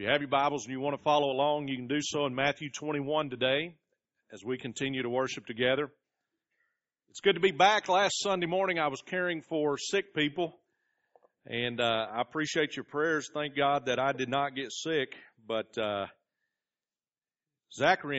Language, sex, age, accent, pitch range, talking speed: English, male, 40-59, American, 120-155 Hz, 180 wpm